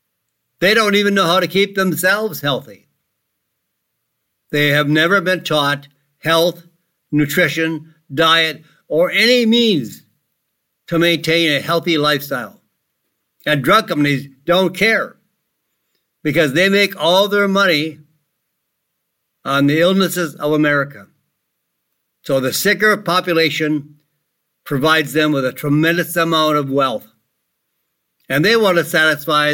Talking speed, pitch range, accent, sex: 120 wpm, 150-185 Hz, American, male